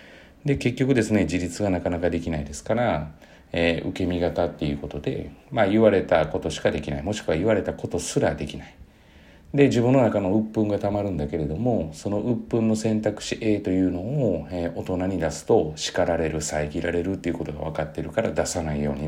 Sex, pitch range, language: male, 80-110 Hz, Japanese